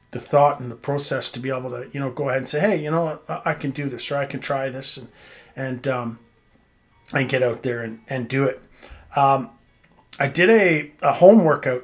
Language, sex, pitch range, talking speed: English, male, 130-155 Hz, 235 wpm